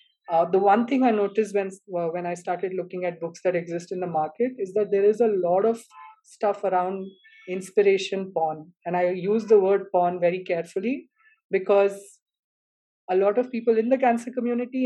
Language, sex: English, female